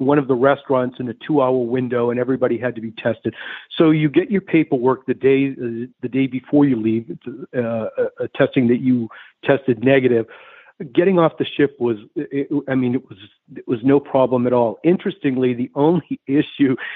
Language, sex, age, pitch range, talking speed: English, male, 50-69, 125-145 Hz, 195 wpm